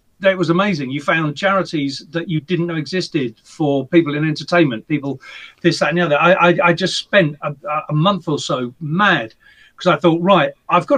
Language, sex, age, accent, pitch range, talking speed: English, male, 40-59, British, 145-185 Hz, 210 wpm